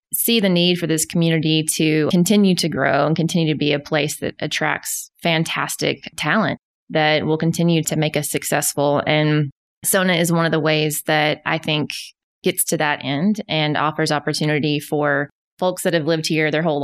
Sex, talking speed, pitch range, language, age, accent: female, 185 wpm, 155-180 Hz, English, 20-39, American